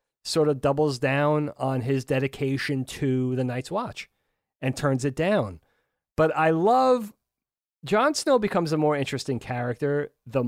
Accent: American